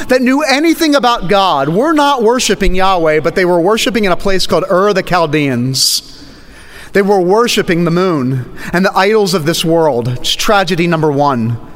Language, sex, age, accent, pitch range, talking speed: English, male, 30-49, American, 165-245 Hz, 180 wpm